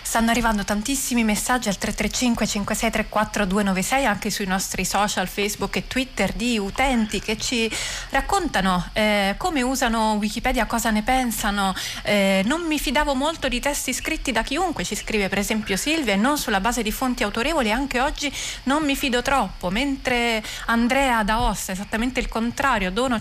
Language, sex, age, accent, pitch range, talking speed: Italian, female, 30-49, native, 200-250 Hz, 165 wpm